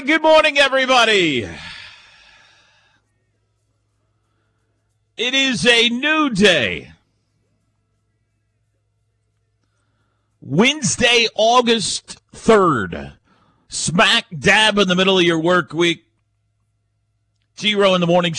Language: English